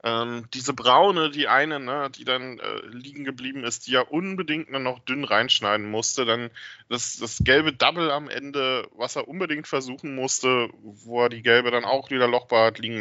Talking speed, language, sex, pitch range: 195 wpm, German, male, 120-145 Hz